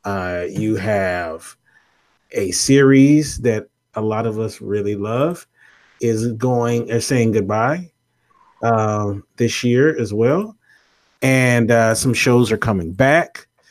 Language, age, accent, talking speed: English, 30-49, American, 125 wpm